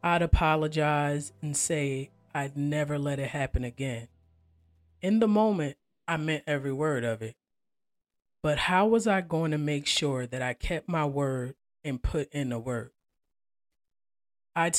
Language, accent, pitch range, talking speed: English, American, 125-155 Hz, 155 wpm